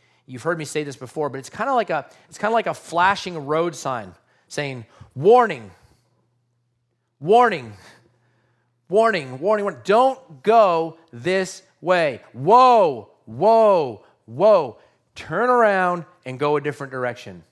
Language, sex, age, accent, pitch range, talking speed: English, male, 40-59, American, 125-175 Hz, 125 wpm